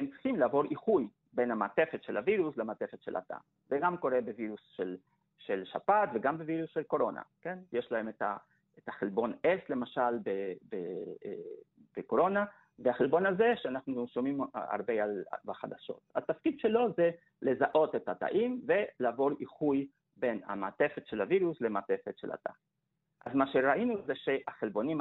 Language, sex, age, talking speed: Hebrew, male, 50-69, 155 wpm